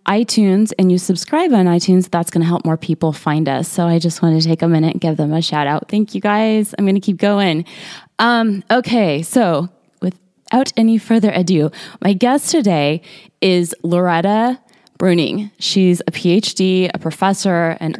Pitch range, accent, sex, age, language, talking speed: 165-205 Hz, American, female, 20-39, English, 185 wpm